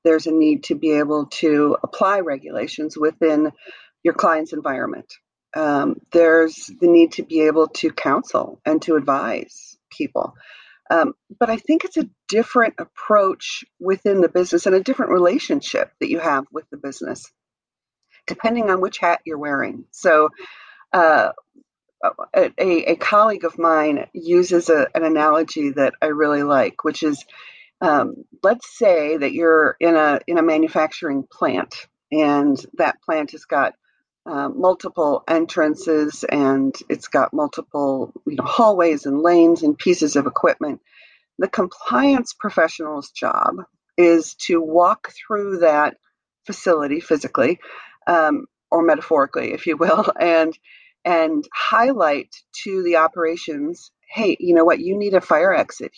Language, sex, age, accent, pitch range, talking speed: English, female, 50-69, American, 155-225 Hz, 145 wpm